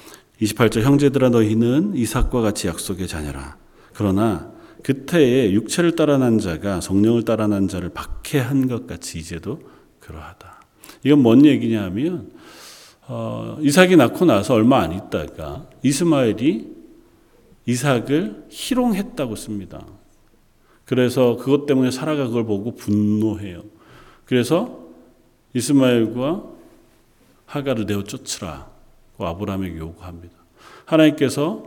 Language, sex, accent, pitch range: Korean, male, native, 100-145 Hz